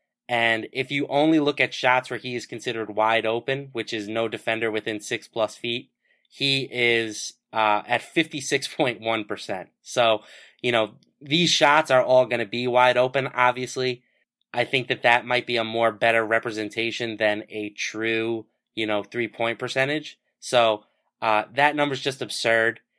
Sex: male